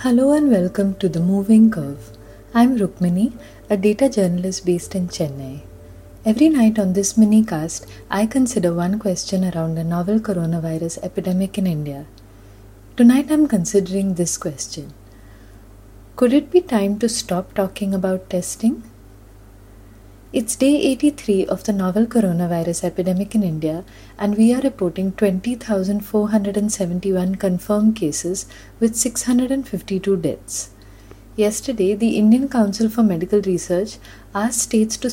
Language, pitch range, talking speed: English, 170-220 Hz, 130 wpm